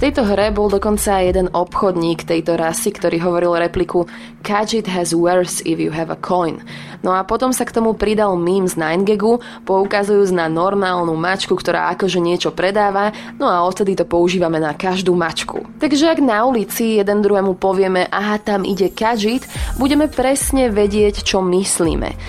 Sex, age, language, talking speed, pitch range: female, 20-39, Slovak, 170 wpm, 185-255 Hz